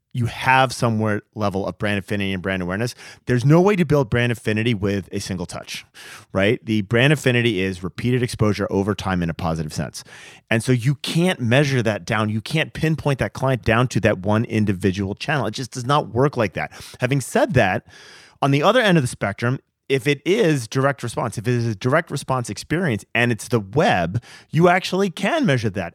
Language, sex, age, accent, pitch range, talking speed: English, male, 30-49, American, 100-140 Hz, 210 wpm